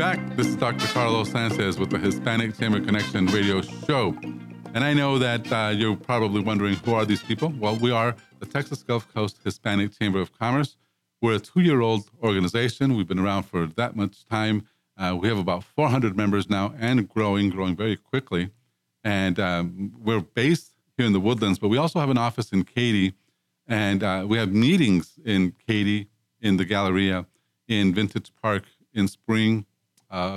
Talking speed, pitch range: 180 wpm, 95-115 Hz